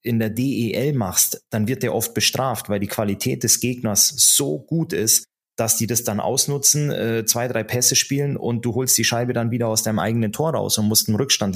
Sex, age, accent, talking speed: male, 30-49, German, 220 wpm